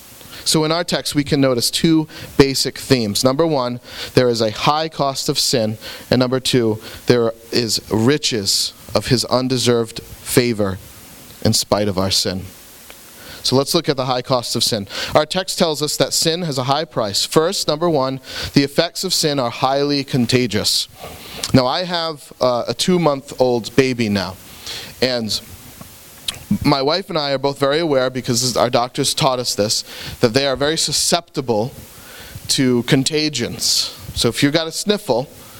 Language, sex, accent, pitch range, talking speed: English, male, American, 120-155 Hz, 165 wpm